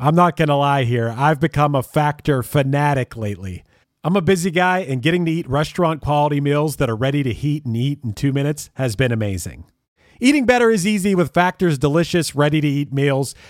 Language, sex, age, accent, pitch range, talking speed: English, male, 40-59, American, 140-190 Hz, 205 wpm